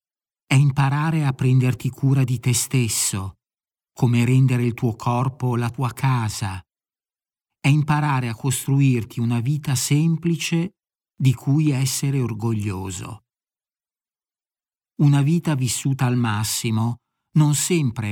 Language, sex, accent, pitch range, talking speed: Italian, male, native, 110-140 Hz, 115 wpm